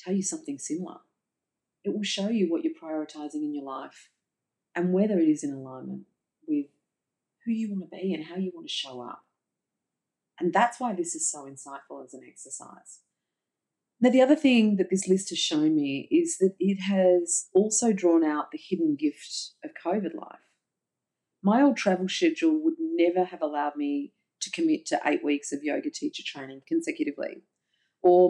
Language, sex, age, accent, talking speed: English, female, 40-59, Australian, 180 wpm